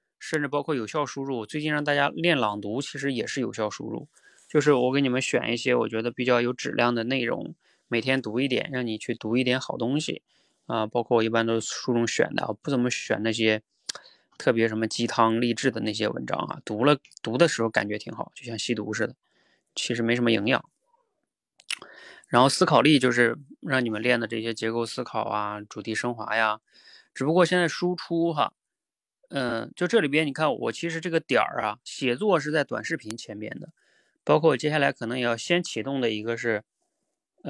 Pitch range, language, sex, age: 115-160 Hz, Chinese, male, 20-39